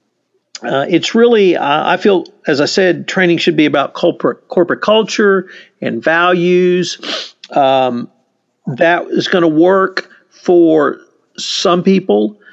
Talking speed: 130 wpm